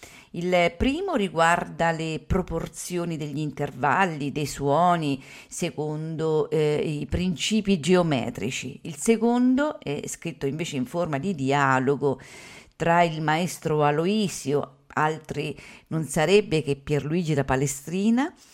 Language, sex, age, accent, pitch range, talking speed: Italian, female, 50-69, native, 140-185 Hz, 110 wpm